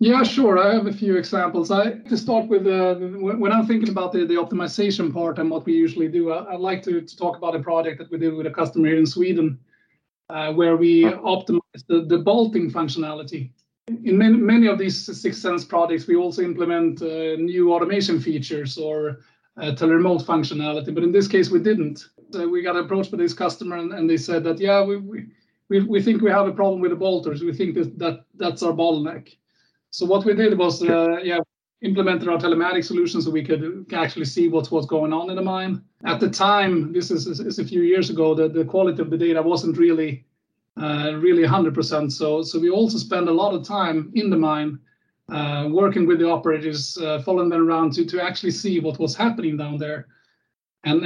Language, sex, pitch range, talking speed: English, male, 165-195 Hz, 215 wpm